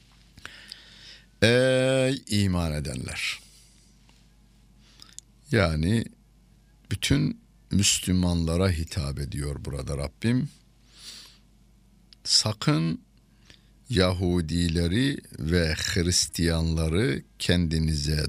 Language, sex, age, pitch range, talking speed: Turkish, male, 60-79, 80-115 Hz, 50 wpm